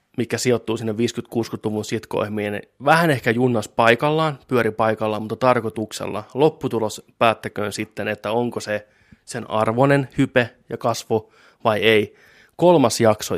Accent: native